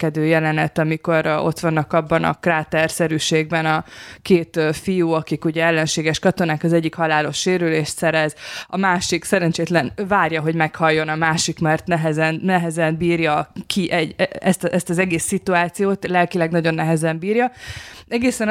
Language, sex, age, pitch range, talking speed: Hungarian, female, 20-39, 160-195 Hz, 140 wpm